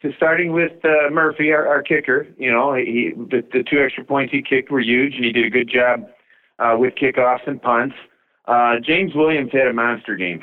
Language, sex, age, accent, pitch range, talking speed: English, male, 40-59, American, 100-125 Hz, 220 wpm